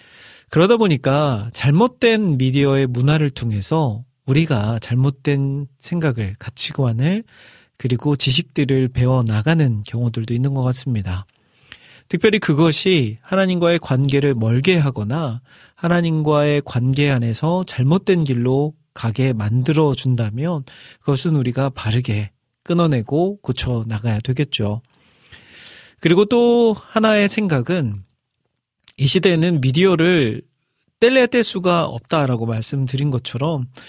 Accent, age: native, 40-59